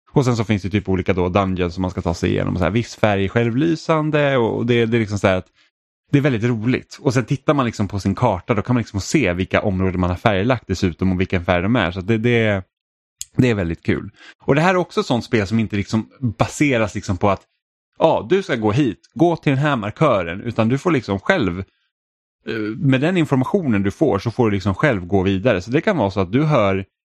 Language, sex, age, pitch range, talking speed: Swedish, male, 10-29, 95-125 Hz, 255 wpm